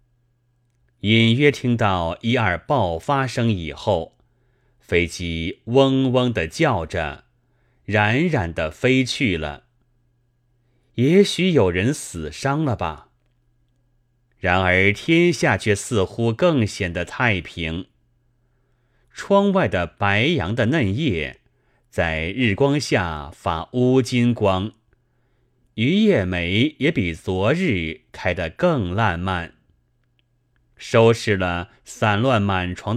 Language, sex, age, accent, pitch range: Chinese, male, 30-49, native, 95-125 Hz